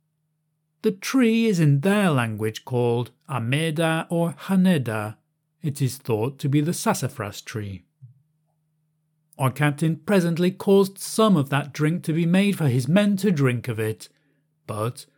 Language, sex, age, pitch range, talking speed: English, male, 40-59, 135-190 Hz, 145 wpm